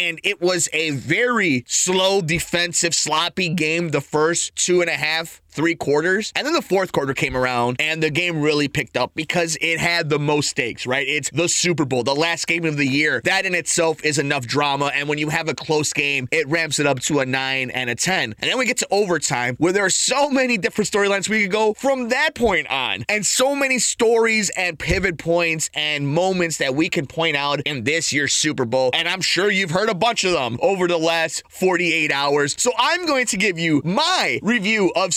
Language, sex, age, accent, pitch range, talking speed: English, male, 30-49, American, 150-185 Hz, 225 wpm